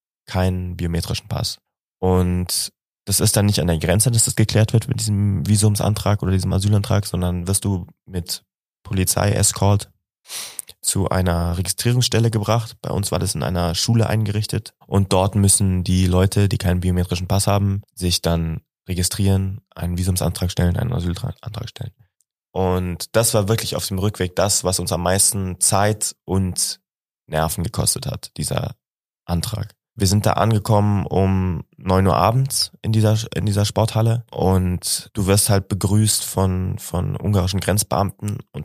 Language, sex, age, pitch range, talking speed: German, male, 20-39, 90-110 Hz, 155 wpm